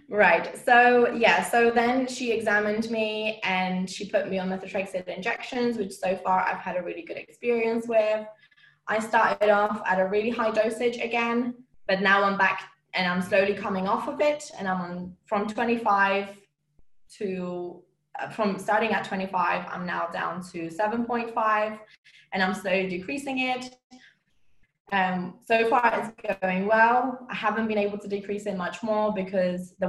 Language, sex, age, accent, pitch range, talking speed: English, female, 20-39, British, 180-225 Hz, 165 wpm